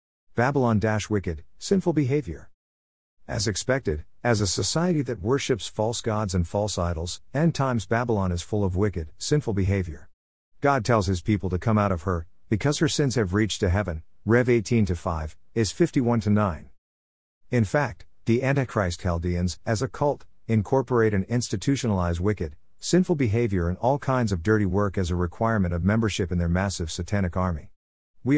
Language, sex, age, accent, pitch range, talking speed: English, male, 50-69, American, 85-120 Hz, 160 wpm